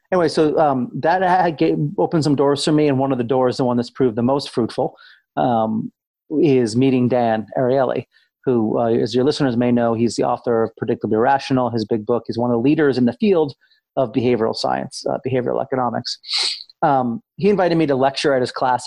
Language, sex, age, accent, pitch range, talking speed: English, male, 30-49, American, 120-155 Hz, 215 wpm